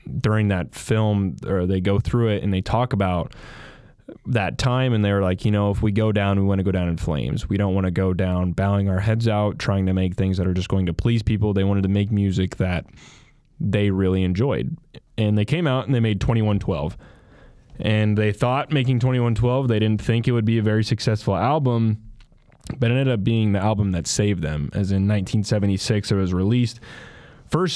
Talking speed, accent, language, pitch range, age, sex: 220 wpm, American, English, 100-120 Hz, 10-29, male